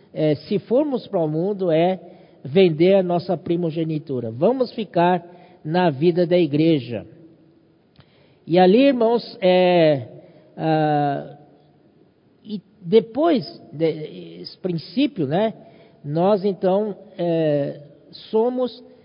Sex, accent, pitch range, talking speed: male, Brazilian, 155-215 Hz, 100 wpm